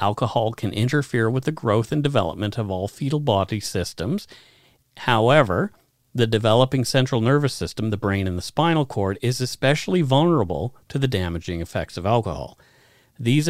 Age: 40-59